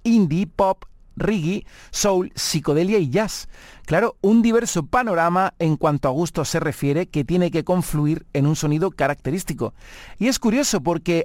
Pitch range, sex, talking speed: 145-195 Hz, male, 155 wpm